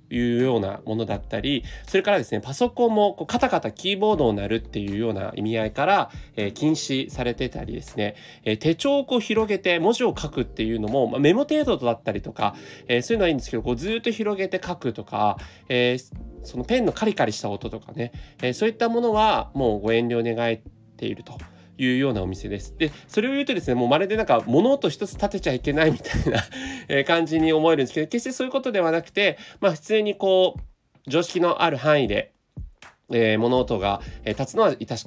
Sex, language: male, Japanese